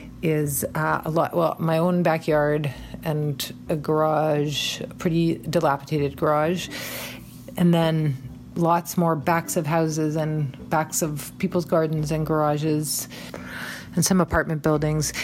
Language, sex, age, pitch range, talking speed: English, female, 40-59, 145-170 Hz, 130 wpm